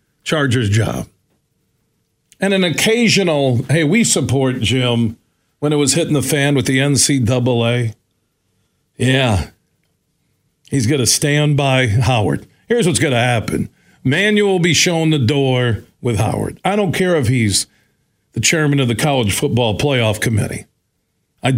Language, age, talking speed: English, 50-69, 145 wpm